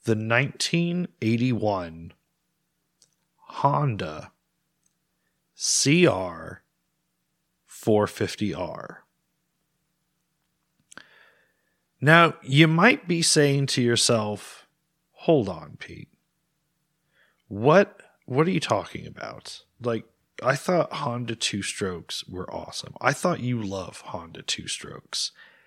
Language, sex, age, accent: English, male, 30-49, American